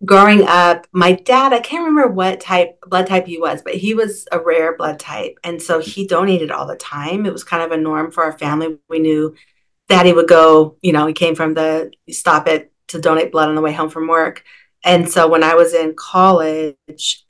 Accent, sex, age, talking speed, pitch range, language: American, female, 40-59, 230 wpm, 155-180 Hz, English